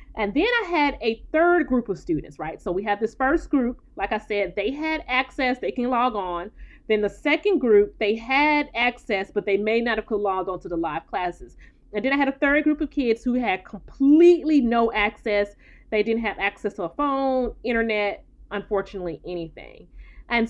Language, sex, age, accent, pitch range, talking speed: English, female, 30-49, American, 195-265 Hz, 205 wpm